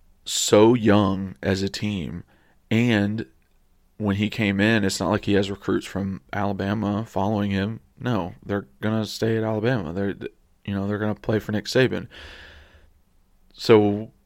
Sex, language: male, English